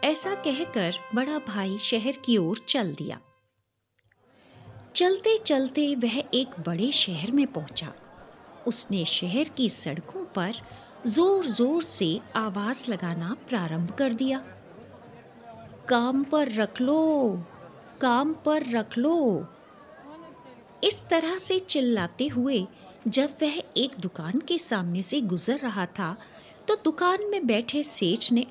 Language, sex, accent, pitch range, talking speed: Hindi, female, native, 195-315 Hz, 125 wpm